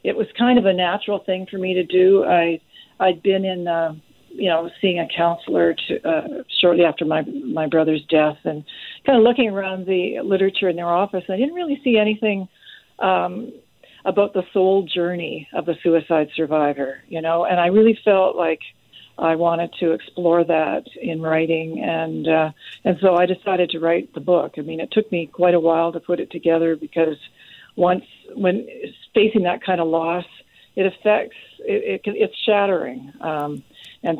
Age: 50-69